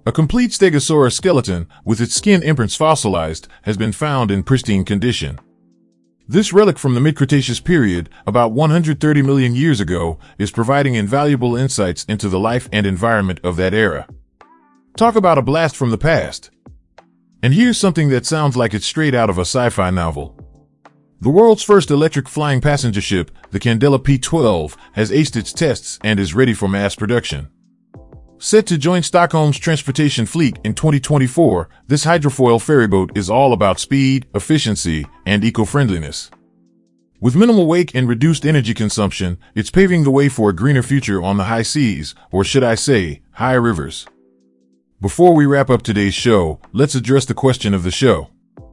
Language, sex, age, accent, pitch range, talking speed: English, male, 30-49, American, 100-150 Hz, 165 wpm